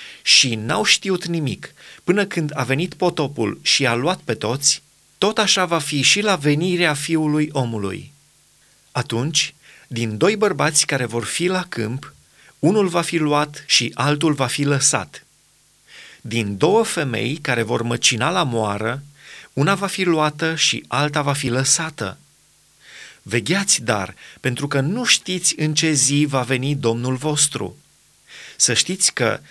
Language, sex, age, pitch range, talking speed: Romanian, male, 30-49, 120-160 Hz, 150 wpm